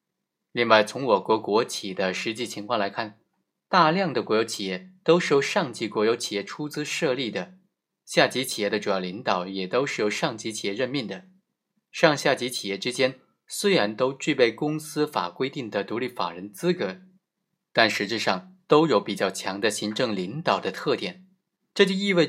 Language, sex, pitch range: Chinese, male, 110-180 Hz